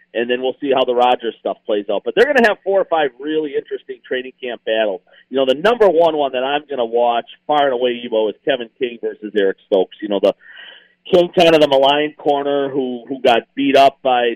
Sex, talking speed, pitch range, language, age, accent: male, 250 wpm, 120-145 Hz, English, 40-59, American